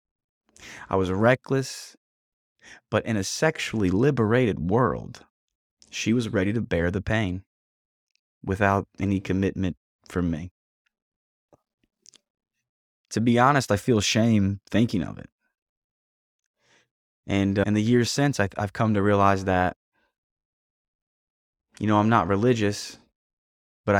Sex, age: male, 20-39